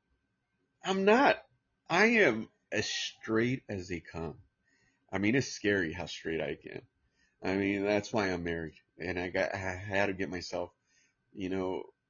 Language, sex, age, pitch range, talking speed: English, male, 30-49, 90-115 Hz, 165 wpm